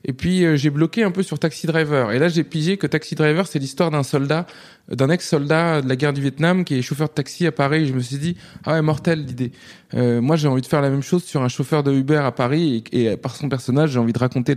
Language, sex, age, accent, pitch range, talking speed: French, male, 20-39, French, 130-165 Hz, 285 wpm